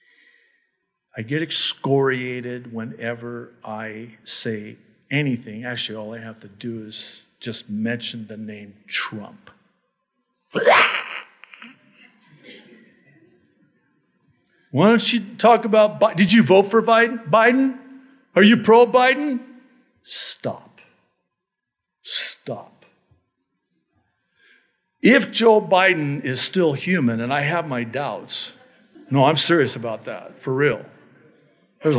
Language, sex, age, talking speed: English, male, 60-79, 100 wpm